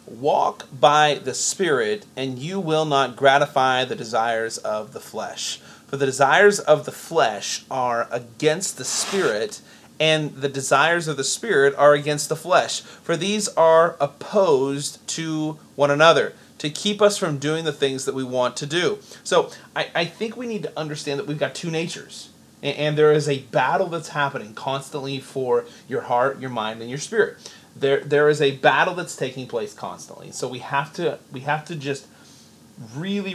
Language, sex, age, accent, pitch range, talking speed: English, male, 30-49, American, 125-155 Hz, 180 wpm